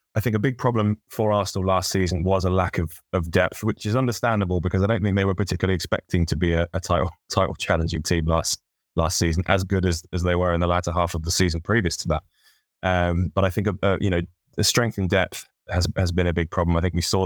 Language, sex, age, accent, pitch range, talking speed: English, male, 20-39, British, 85-100 Hz, 255 wpm